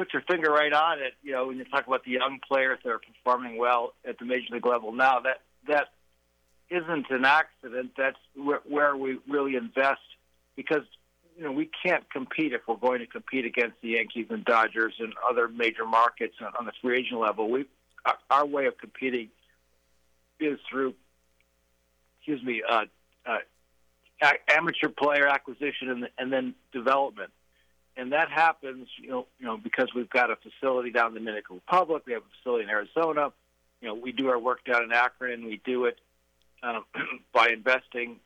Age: 60-79